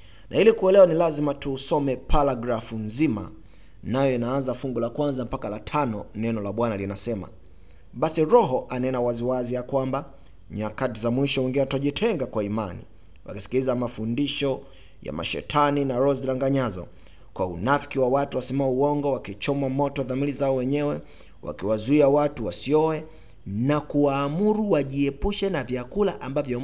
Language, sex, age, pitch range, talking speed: Swahili, male, 30-49, 110-150 Hz, 130 wpm